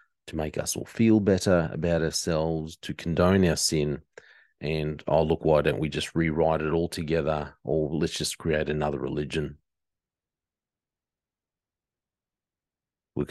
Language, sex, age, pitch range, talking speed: English, male, 40-59, 80-90 Hz, 135 wpm